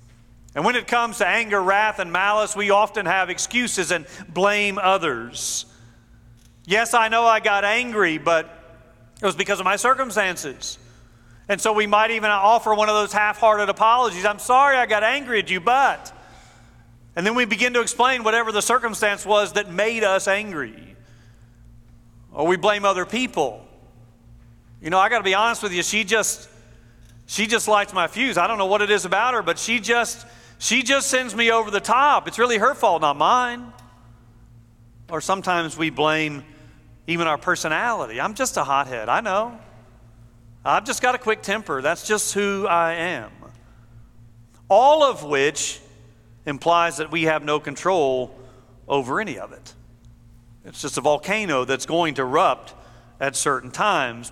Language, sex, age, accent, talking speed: English, male, 40-59, American, 170 wpm